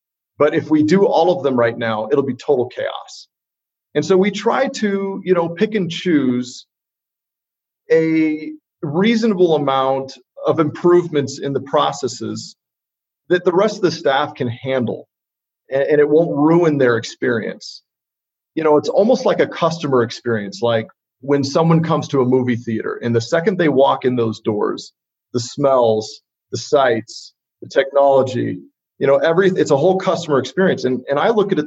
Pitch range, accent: 120-160 Hz, American